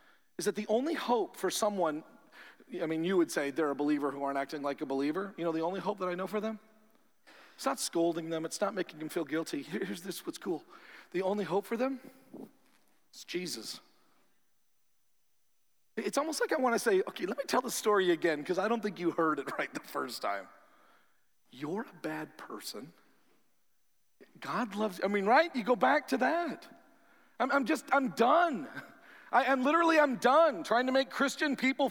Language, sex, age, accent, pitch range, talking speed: English, male, 40-59, American, 180-265 Hz, 195 wpm